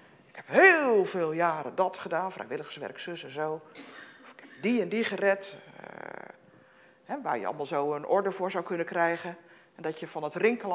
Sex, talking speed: female, 195 wpm